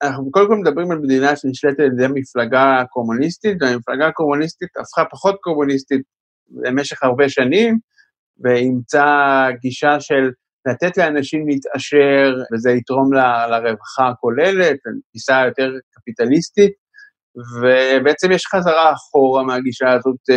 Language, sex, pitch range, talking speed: Hebrew, male, 120-145 Hz, 115 wpm